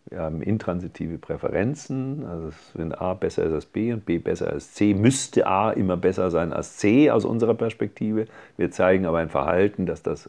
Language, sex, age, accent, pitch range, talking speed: German, male, 50-69, German, 85-105 Hz, 190 wpm